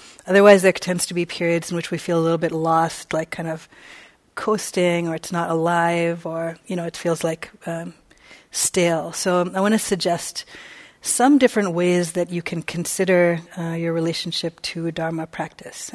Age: 30-49